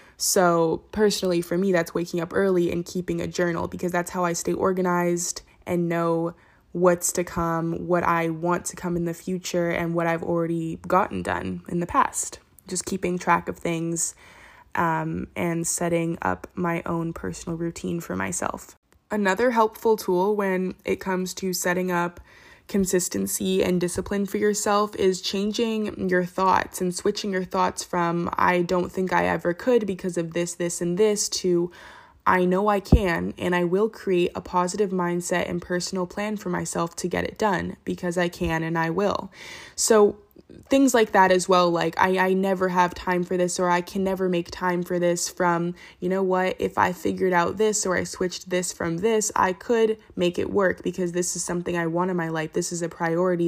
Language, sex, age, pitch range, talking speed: English, female, 20-39, 170-190 Hz, 195 wpm